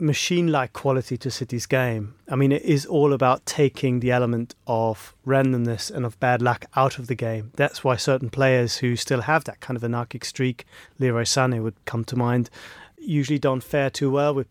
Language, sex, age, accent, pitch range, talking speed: English, male, 30-49, British, 120-140 Hz, 205 wpm